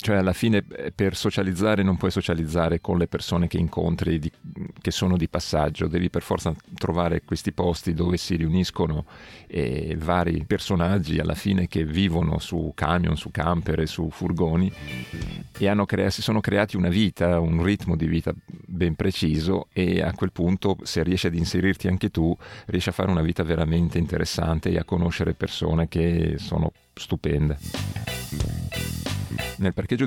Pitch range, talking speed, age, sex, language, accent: 80-95 Hz, 160 wpm, 40-59, male, Italian, native